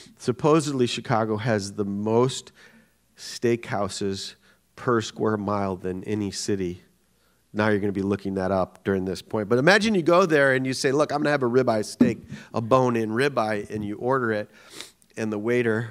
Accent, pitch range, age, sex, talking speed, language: American, 100-125 Hz, 40-59, male, 185 wpm, English